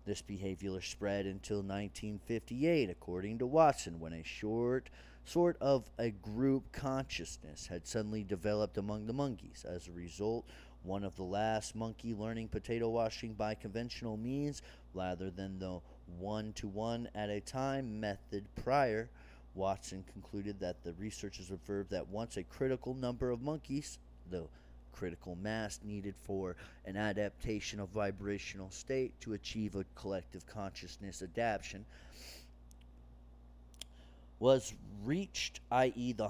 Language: English